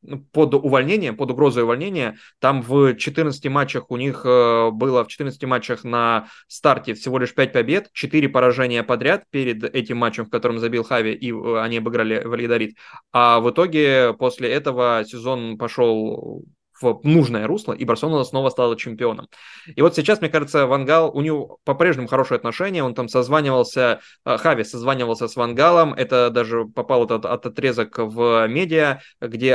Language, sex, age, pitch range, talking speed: Russian, male, 20-39, 115-140 Hz, 155 wpm